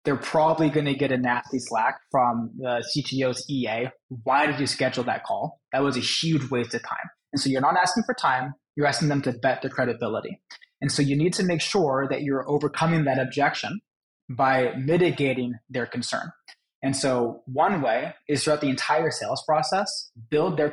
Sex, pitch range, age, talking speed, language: male, 135-160 Hz, 20-39, 195 wpm, English